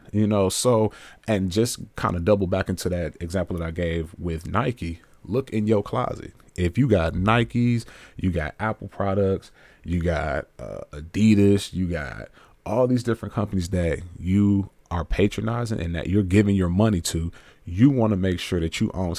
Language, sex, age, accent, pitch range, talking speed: English, male, 30-49, American, 85-105 Hz, 180 wpm